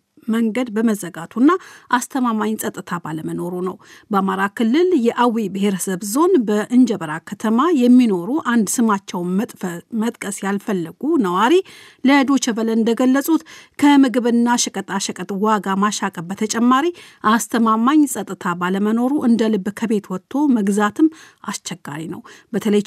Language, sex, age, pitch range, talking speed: Amharic, female, 50-69, 195-255 Hz, 100 wpm